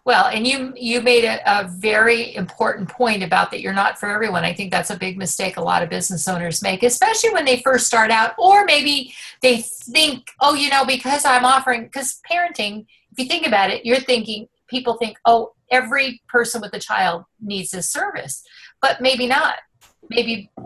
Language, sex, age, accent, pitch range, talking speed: English, female, 50-69, American, 195-245 Hz, 200 wpm